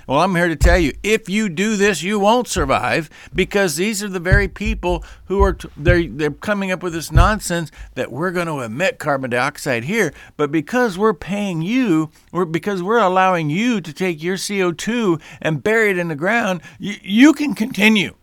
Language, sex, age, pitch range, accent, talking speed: English, male, 50-69, 130-180 Hz, American, 200 wpm